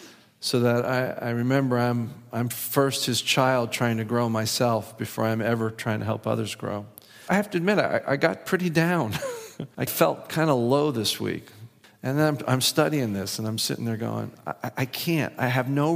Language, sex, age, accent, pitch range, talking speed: English, male, 50-69, American, 115-155 Hz, 205 wpm